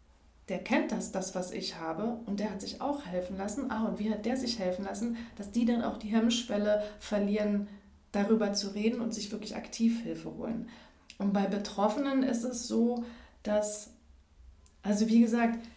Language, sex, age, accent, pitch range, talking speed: German, female, 30-49, German, 185-230 Hz, 185 wpm